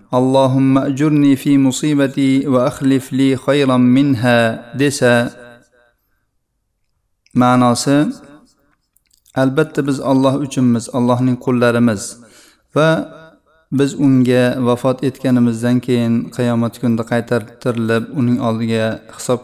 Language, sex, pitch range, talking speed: Bulgarian, male, 115-135 Hz, 85 wpm